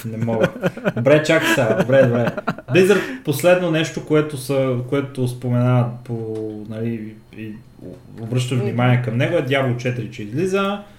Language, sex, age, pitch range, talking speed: Bulgarian, male, 20-39, 110-130 Hz, 130 wpm